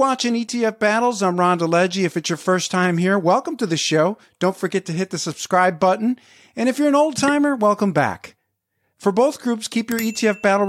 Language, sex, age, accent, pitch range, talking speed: English, male, 50-69, American, 170-225 Hz, 215 wpm